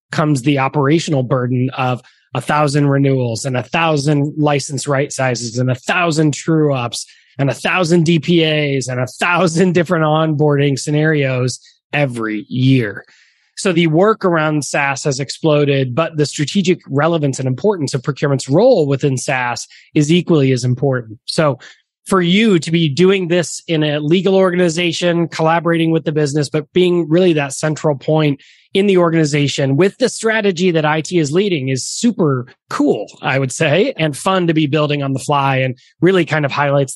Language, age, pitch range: English, 20-39, 135-170 Hz